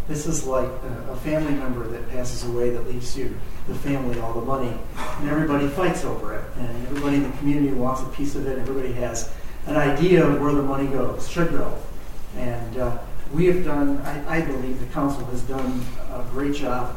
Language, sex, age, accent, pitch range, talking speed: English, male, 40-59, American, 125-150 Hz, 205 wpm